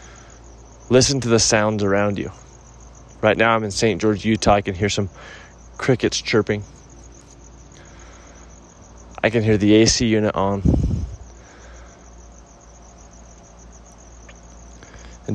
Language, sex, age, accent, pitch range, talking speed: English, male, 20-39, American, 90-110 Hz, 105 wpm